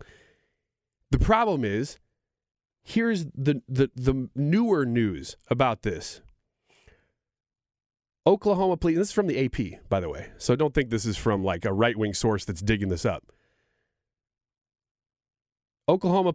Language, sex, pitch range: English, male, 110-140 Hz